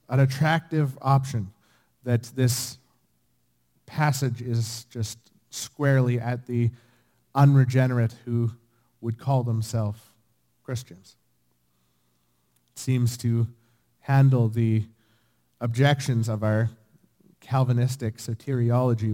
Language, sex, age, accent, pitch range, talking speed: English, male, 30-49, American, 105-130 Hz, 85 wpm